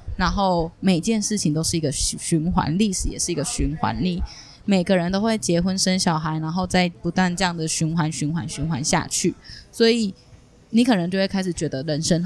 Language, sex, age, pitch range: Chinese, female, 10-29, 165-200 Hz